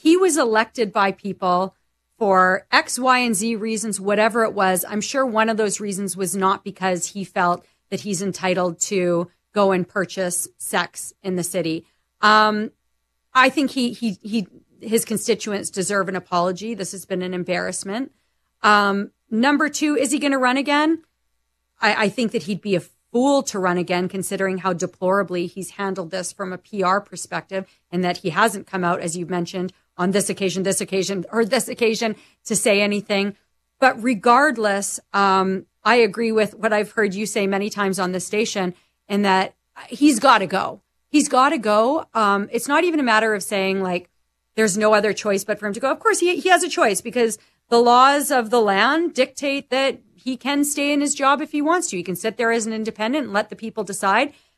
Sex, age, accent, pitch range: female, 40-59, American, 190-245 Hz